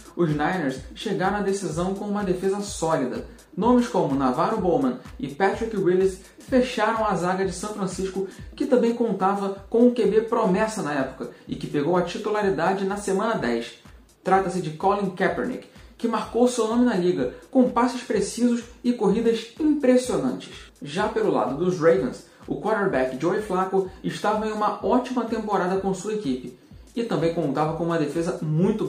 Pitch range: 180-225 Hz